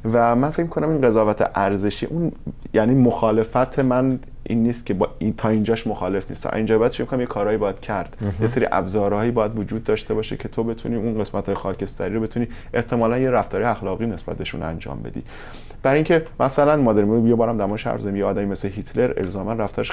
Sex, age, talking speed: male, 20-39, 200 wpm